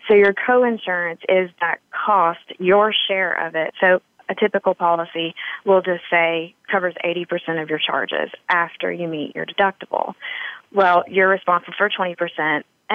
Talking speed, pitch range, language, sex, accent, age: 150 wpm, 170-195 Hz, English, female, American, 30-49